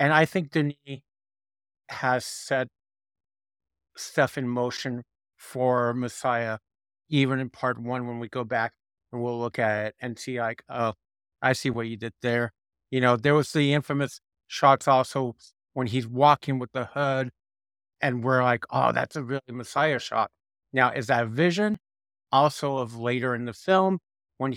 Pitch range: 120-145 Hz